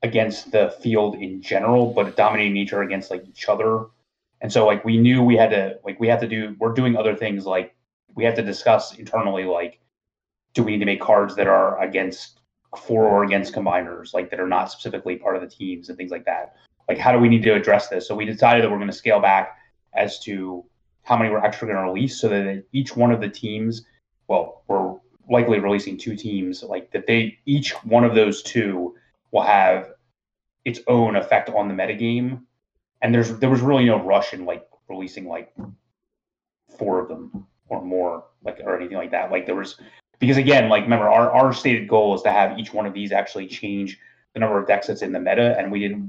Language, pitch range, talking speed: English, 100-120 Hz, 220 wpm